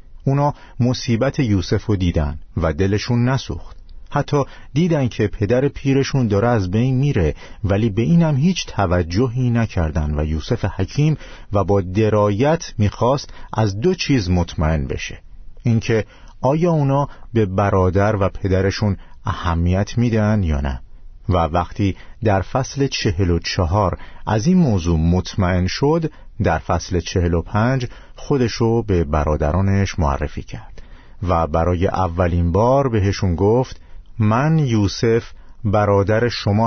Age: 50-69